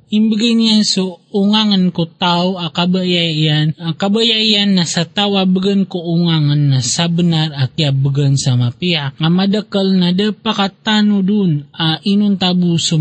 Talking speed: 135 wpm